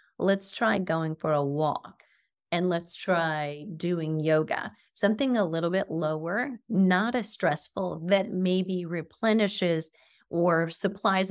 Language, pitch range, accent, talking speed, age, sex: English, 165-205 Hz, American, 125 wpm, 30-49, female